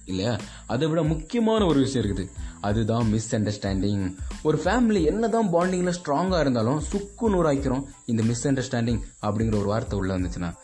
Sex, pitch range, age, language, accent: male, 125-190 Hz, 20-39, Tamil, native